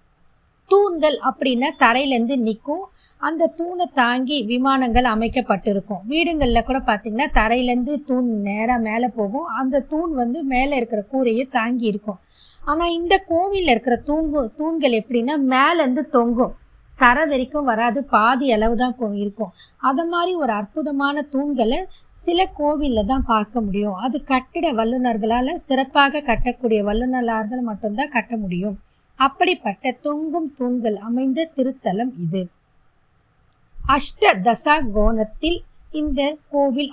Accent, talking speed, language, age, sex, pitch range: native, 115 wpm, Tamil, 20-39, female, 225-290 Hz